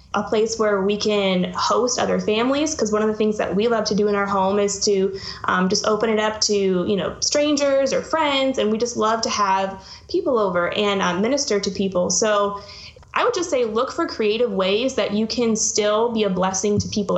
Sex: female